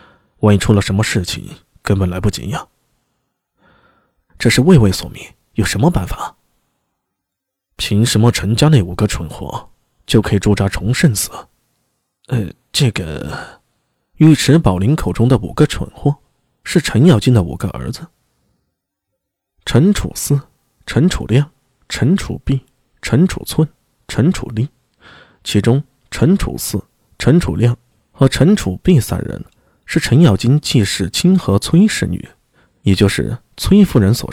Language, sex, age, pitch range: Chinese, male, 20-39, 105-155 Hz